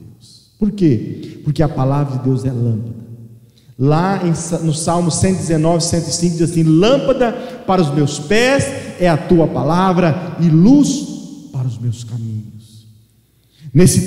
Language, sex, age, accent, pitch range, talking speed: Portuguese, male, 40-59, Brazilian, 135-200 Hz, 135 wpm